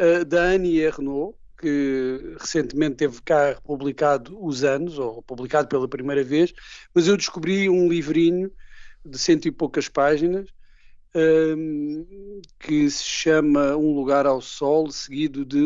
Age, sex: 50-69, male